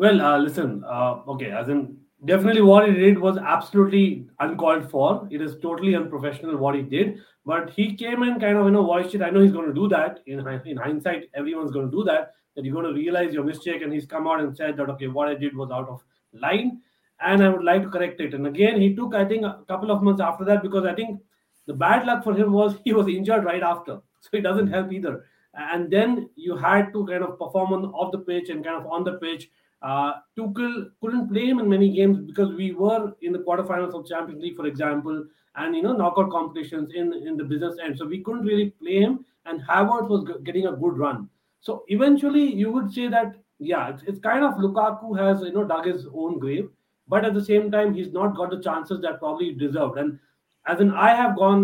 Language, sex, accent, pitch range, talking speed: English, male, Indian, 160-205 Hz, 240 wpm